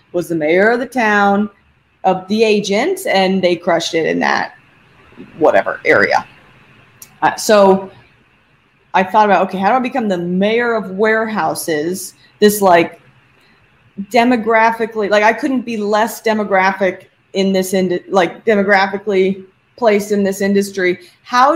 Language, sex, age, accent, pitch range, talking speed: English, female, 30-49, American, 190-245 Hz, 140 wpm